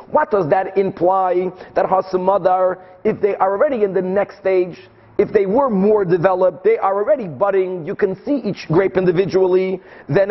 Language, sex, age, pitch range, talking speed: English, male, 40-59, 185-210 Hz, 175 wpm